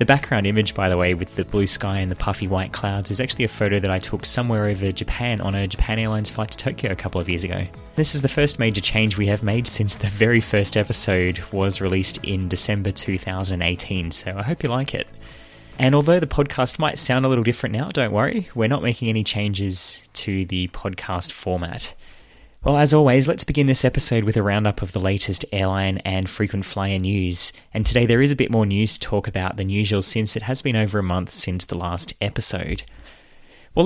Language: English